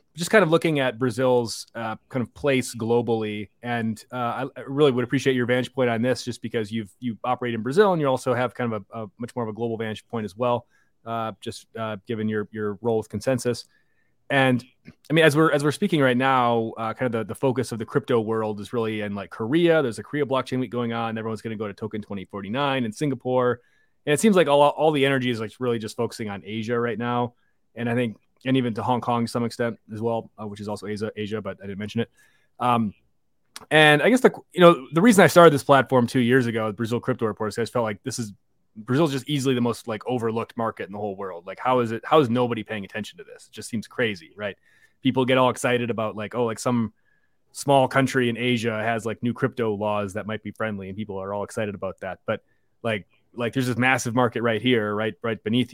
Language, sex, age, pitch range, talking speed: English, male, 30-49, 110-130 Hz, 250 wpm